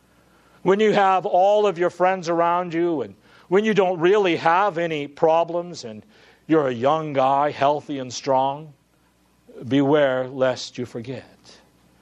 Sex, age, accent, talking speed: male, 50-69, American, 145 wpm